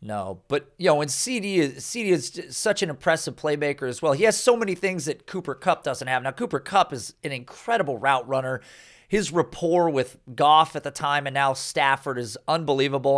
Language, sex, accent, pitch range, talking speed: English, male, American, 135-175 Hz, 215 wpm